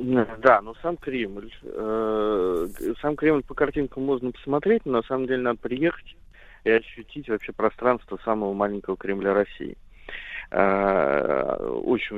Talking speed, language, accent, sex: 135 wpm, Russian, native, male